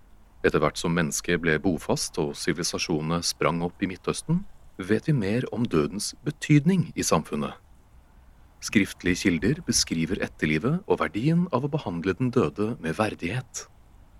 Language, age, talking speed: English, 30-49, 135 wpm